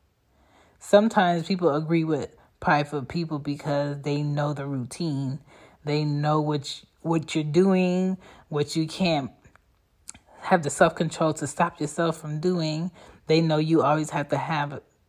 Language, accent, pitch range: English, American, 145-190 Hz